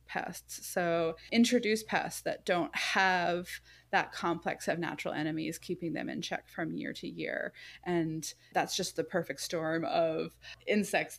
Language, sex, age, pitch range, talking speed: English, female, 20-39, 160-195 Hz, 150 wpm